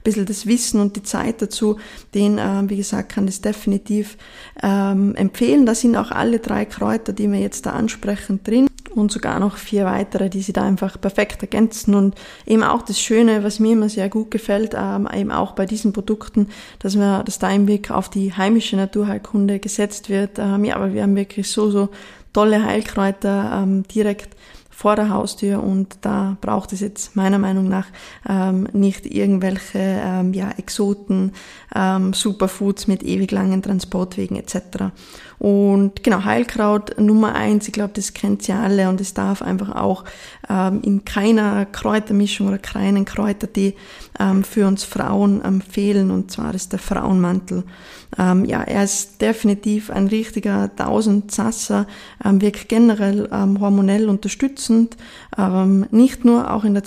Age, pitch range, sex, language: 20-39, 195-215 Hz, female, German